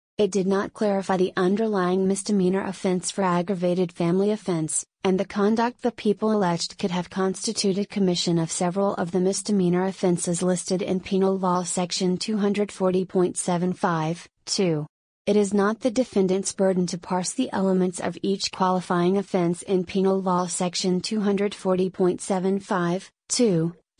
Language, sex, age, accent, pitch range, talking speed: English, female, 30-49, American, 180-200 Hz, 135 wpm